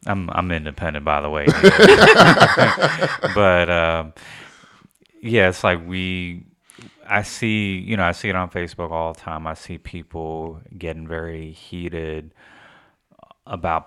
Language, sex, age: English, male, 30-49